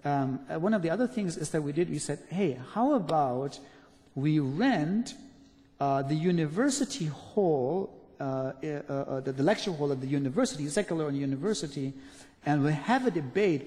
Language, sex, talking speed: English, male, 165 wpm